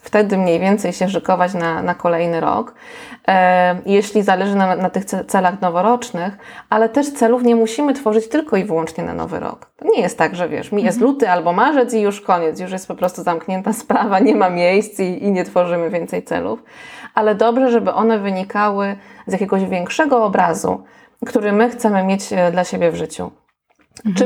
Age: 20-39